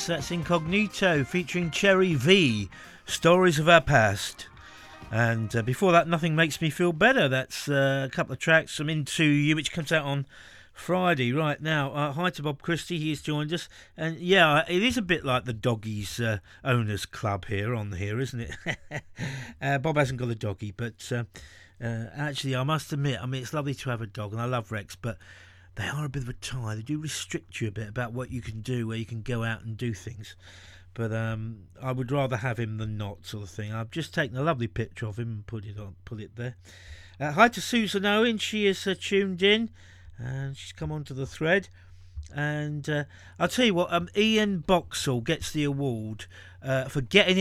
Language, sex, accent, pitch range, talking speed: English, male, British, 110-160 Hz, 215 wpm